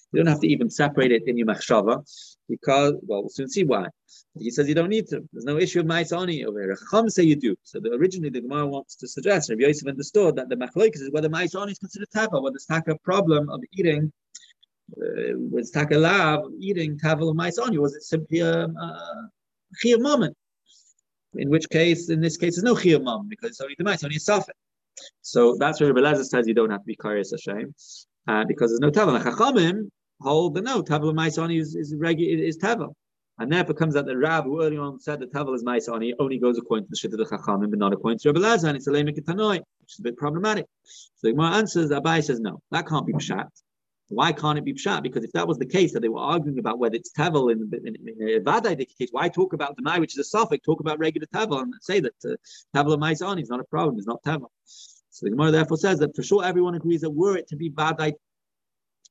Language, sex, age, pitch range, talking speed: English, male, 30-49, 140-180 Hz, 240 wpm